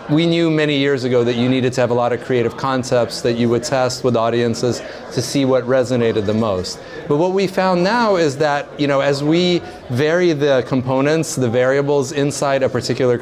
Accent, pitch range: American, 115-150 Hz